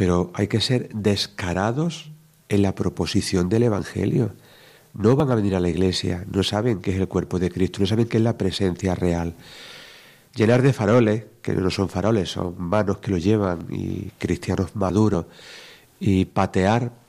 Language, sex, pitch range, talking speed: Spanish, male, 95-120 Hz, 170 wpm